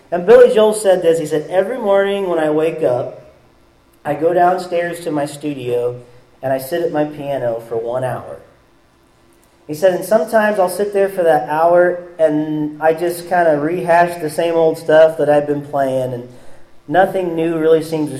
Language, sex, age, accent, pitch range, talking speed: English, male, 40-59, American, 145-185 Hz, 190 wpm